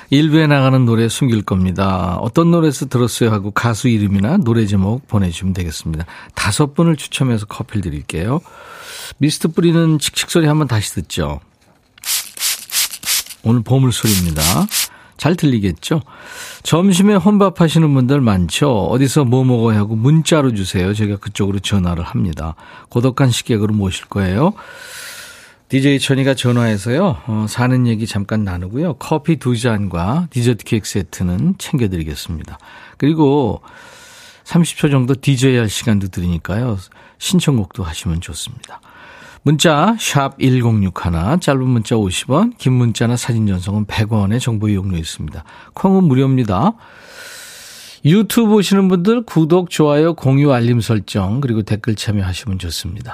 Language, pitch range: Korean, 105-155 Hz